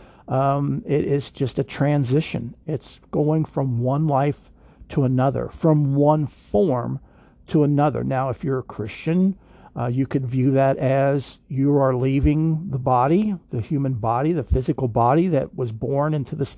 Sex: male